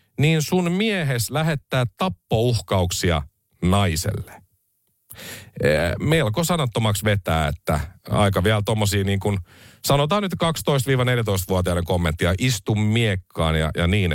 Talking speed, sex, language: 105 wpm, male, Finnish